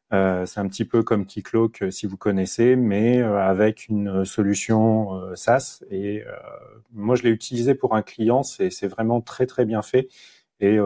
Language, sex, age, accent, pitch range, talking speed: French, male, 30-49, French, 100-120 Hz, 160 wpm